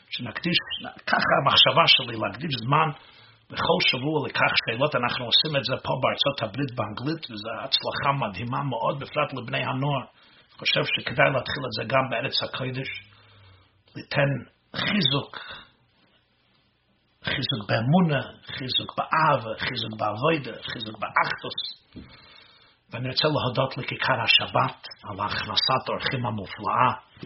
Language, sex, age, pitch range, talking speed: Hebrew, male, 60-79, 110-140 Hz, 115 wpm